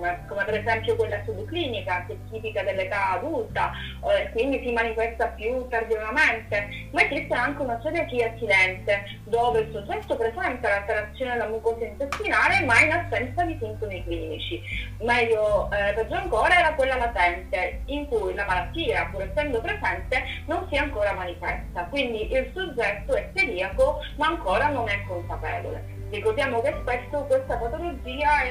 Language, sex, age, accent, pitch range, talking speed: Italian, female, 30-49, native, 200-290 Hz, 150 wpm